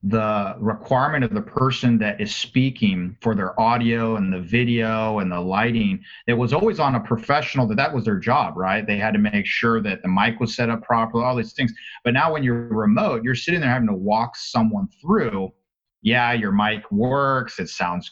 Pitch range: 110-130 Hz